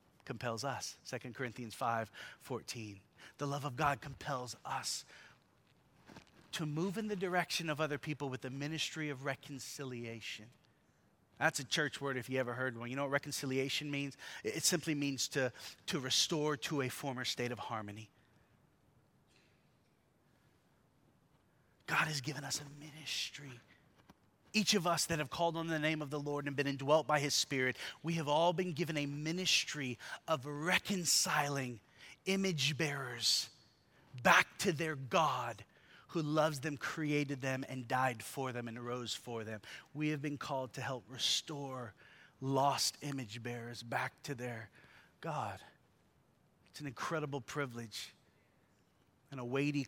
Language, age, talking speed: English, 30-49, 150 wpm